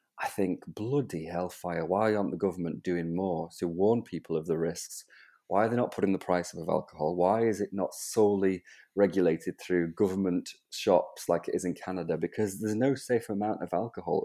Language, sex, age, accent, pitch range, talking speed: English, male, 30-49, British, 85-100 Hz, 195 wpm